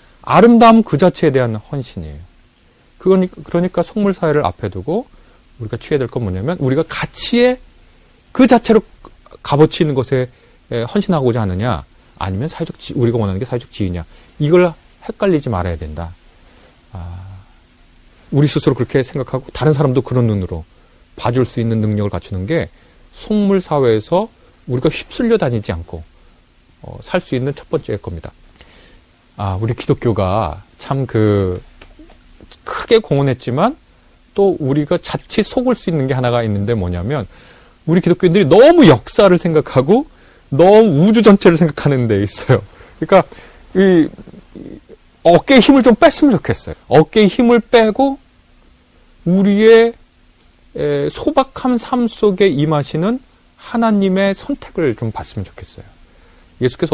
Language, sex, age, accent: Korean, male, 40-59, native